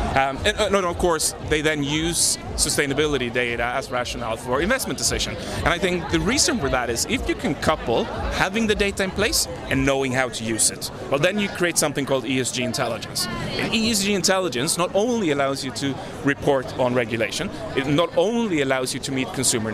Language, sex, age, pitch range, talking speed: English, male, 30-49, 125-175 Hz, 200 wpm